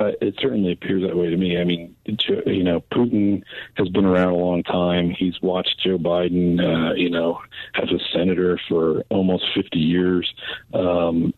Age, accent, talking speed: 50-69, American, 180 wpm